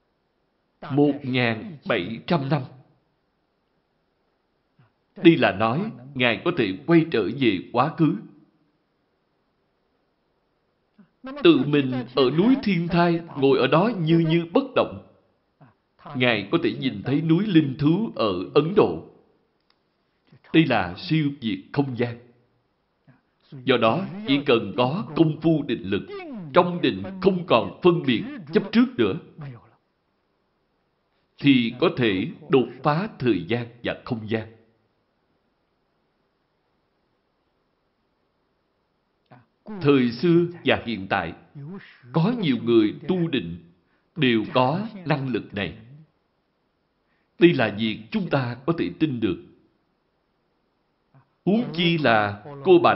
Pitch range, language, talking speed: 120-175 Hz, Vietnamese, 115 wpm